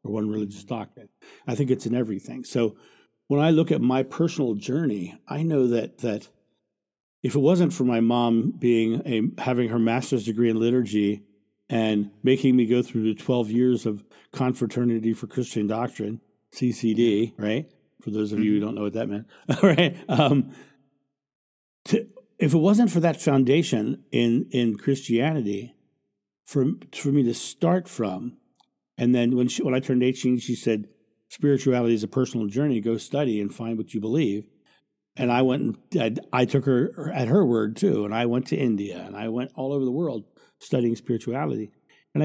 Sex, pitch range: male, 110-135 Hz